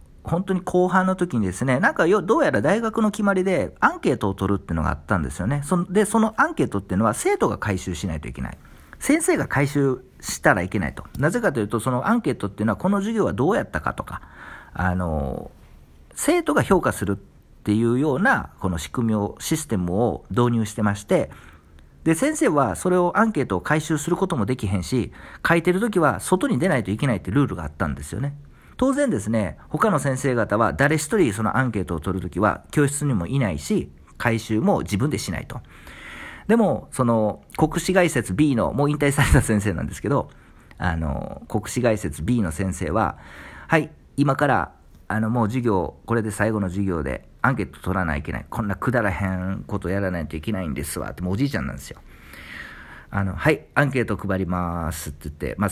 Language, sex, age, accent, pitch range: Japanese, male, 50-69, native, 90-145 Hz